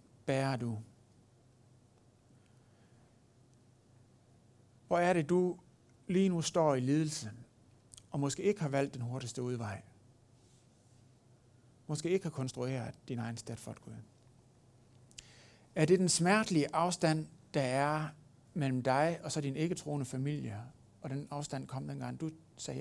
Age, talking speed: 60-79, 135 wpm